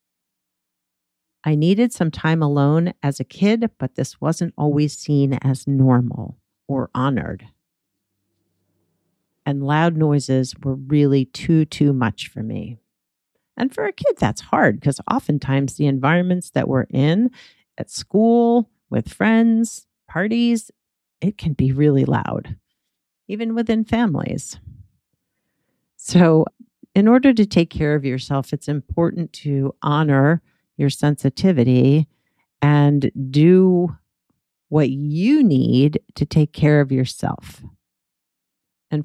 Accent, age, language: American, 50-69, English